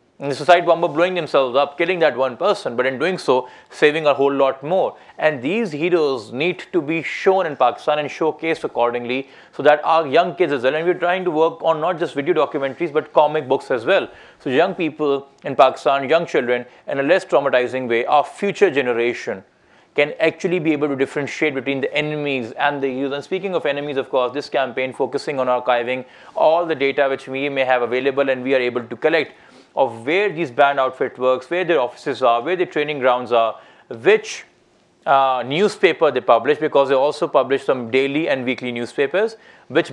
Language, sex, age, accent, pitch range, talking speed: English, male, 30-49, Indian, 135-175 Hz, 205 wpm